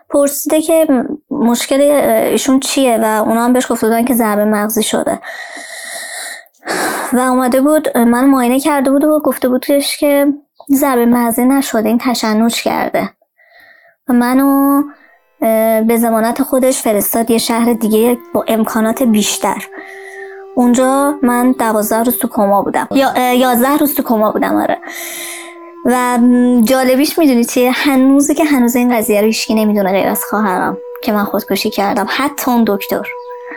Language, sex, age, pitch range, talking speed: Persian, male, 20-39, 230-290 Hz, 140 wpm